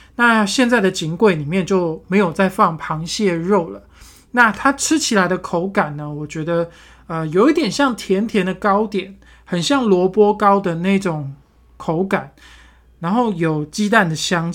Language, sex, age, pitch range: Chinese, male, 20-39, 165-210 Hz